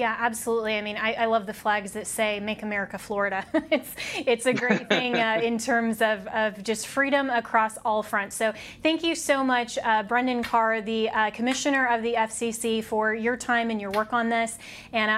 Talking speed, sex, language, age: 205 wpm, female, English, 20-39